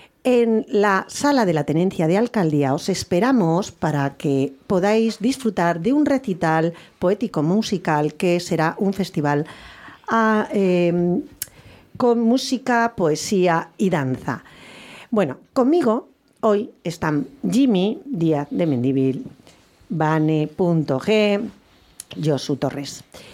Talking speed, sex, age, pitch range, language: 100 wpm, female, 40-59, 160-220 Hz, English